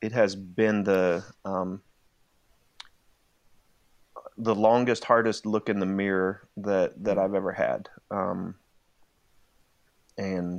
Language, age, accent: English, 30-49, American